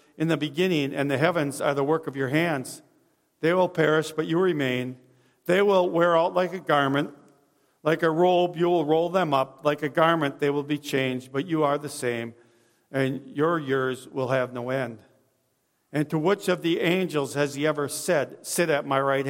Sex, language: male, English